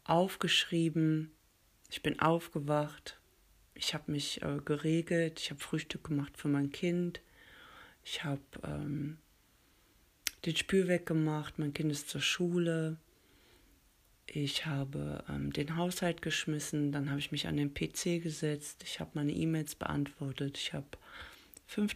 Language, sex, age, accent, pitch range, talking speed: German, female, 40-59, German, 145-165 Hz, 135 wpm